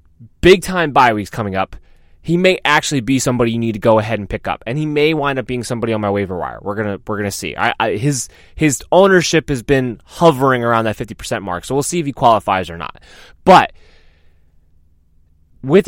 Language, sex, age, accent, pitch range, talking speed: English, male, 20-39, American, 110-155 Hz, 215 wpm